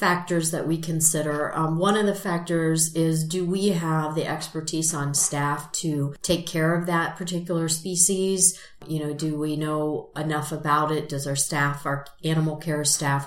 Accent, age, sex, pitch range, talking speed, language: American, 40-59, female, 150-175 Hz, 175 wpm, English